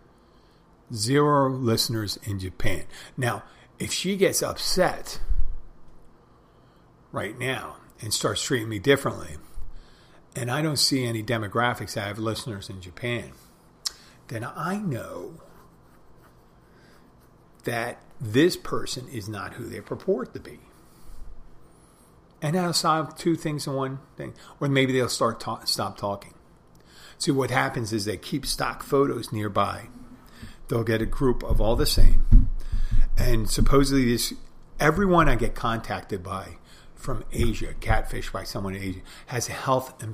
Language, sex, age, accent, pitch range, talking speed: English, male, 50-69, American, 100-130 Hz, 140 wpm